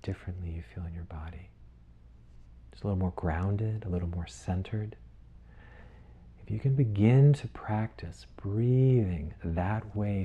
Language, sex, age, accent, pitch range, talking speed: English, male, 40-59, American, 80-100 Hz, 140 wpm